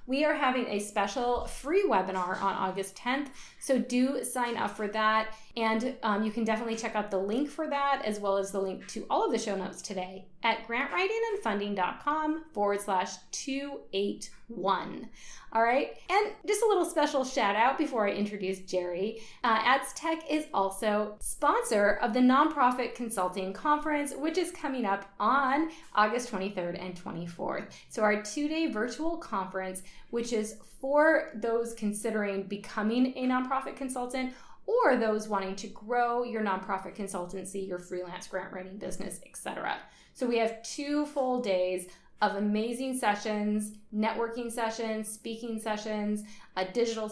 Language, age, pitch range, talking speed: English, 20-39, 195-260 Hz, 155 wpm